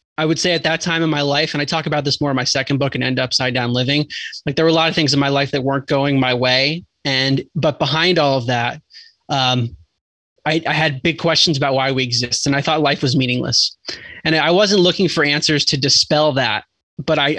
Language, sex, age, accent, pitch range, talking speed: English, male, 20-39, American, 135-160 Hz, 250 wpm